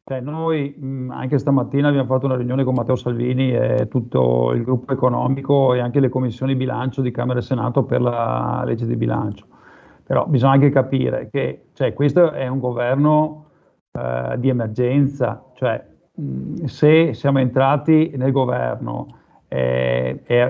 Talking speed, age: 140 wpm, 50-69